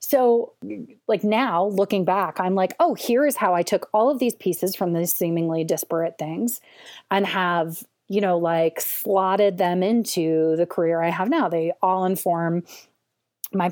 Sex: female